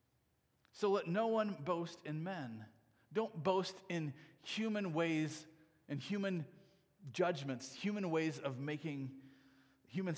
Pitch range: 130-185 Hz